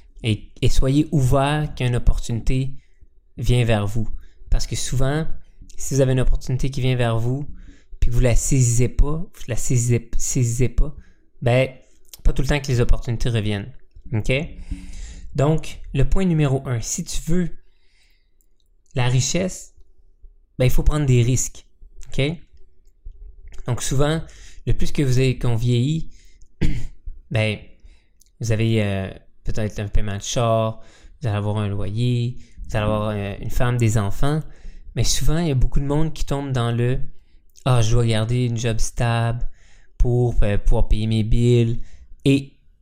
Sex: male